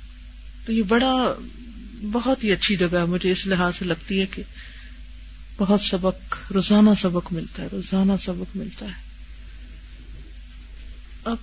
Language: Urdu